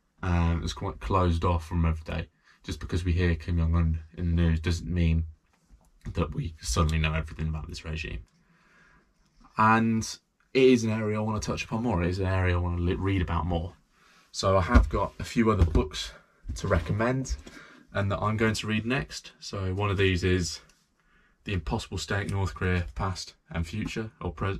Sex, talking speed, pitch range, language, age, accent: male, 195 wpm, 80-95 Hz, English, 20-39, British